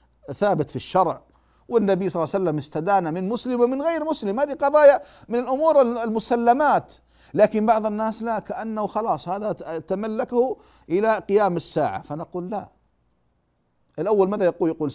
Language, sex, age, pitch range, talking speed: Arabic, male, 50-69, 125-190 Hz, 145 wpm